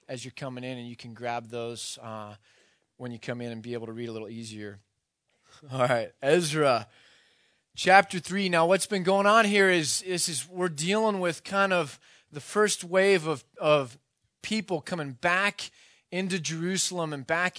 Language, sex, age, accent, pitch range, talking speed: English, male, 20-39, American, 145-180 Hz, 180 wpm